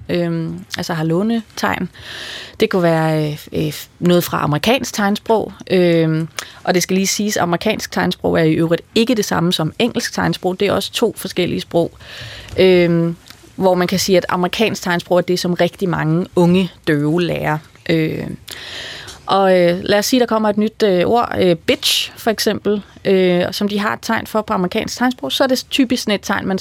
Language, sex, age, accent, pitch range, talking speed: Danish, female, 30-49, native, 170-205 Hz, 195 wpm